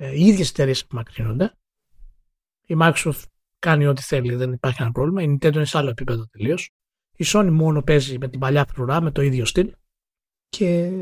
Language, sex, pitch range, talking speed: Greek, male, 140-195 Hz, 175 wpm